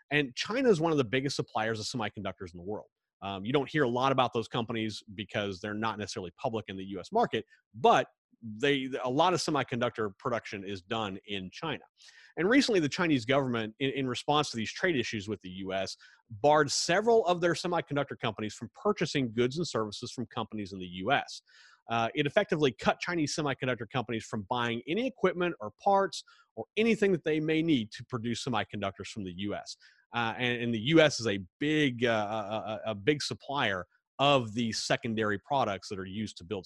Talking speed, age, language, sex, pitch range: 195 wpm, 30-49, English, male, 110-150 Hz